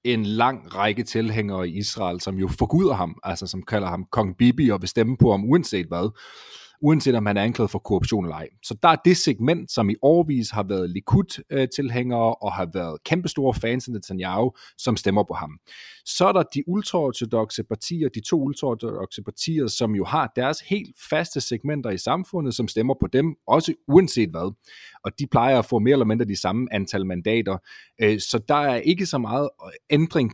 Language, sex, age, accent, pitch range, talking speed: Danish, male, 30-49, native, 105-140 Hz, 195 wpm